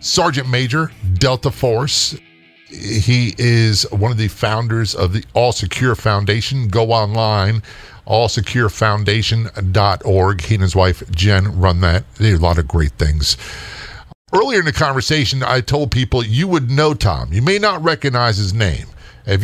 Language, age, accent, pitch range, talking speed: English, 50-69, American, 105-135 Hz, 155 wpm